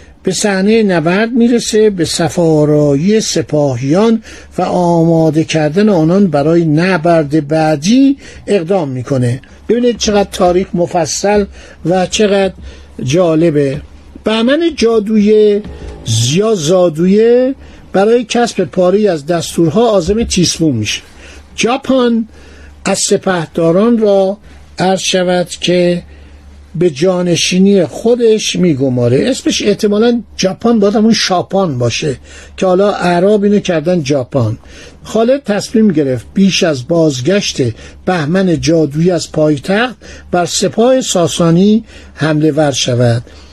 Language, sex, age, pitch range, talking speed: Persian, male, 60-79, 155-210 Hz, 100 wpm